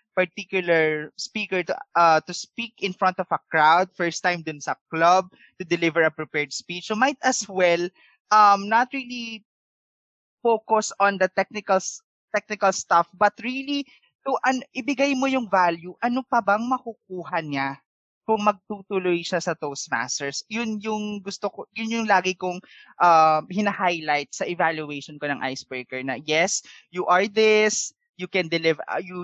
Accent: Filipino